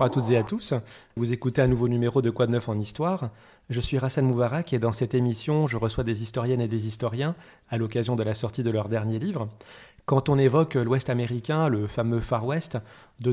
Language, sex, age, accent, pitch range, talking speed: French, male, 20-39, French, 120-140 Hz, 225 wpm